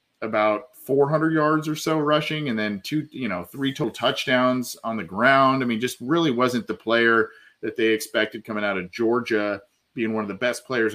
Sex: male